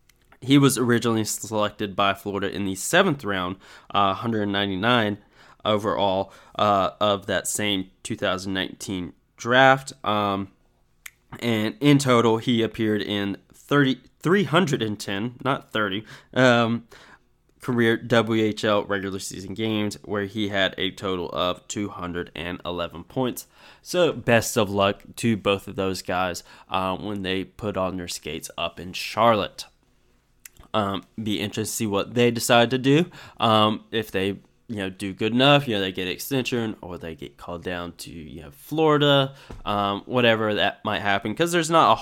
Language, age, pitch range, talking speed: English, 20-39, 95-120 Hz, 150 wpm